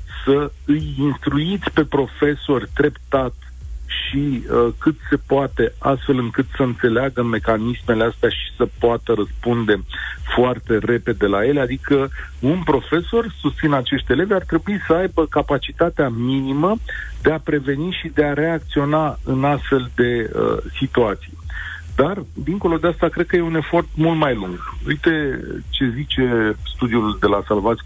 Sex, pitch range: male, 115-150 Hz